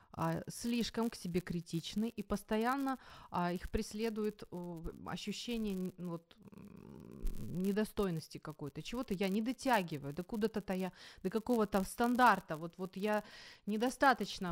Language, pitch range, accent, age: Ukrainian, 170-225 Hz, native, 30-49